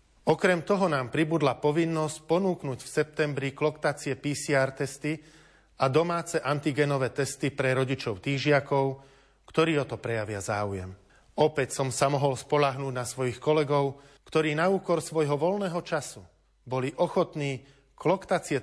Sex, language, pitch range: male, Slovak, 125-155 Hz